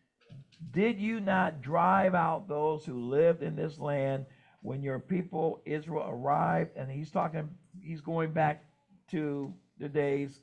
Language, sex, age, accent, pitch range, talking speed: English, male, 50-69, American, 140-185 Hz, 145 wpm